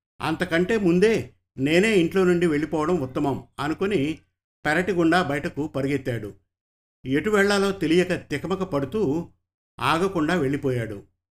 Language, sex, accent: Telugu, male, native